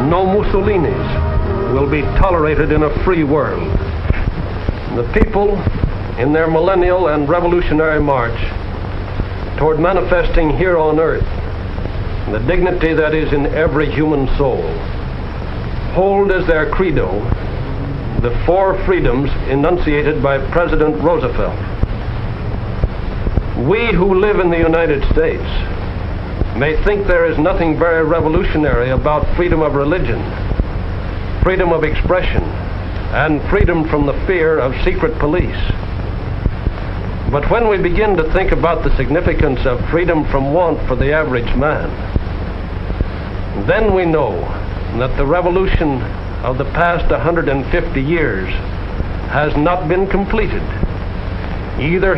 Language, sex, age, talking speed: English, male, 60-79, 120 wpm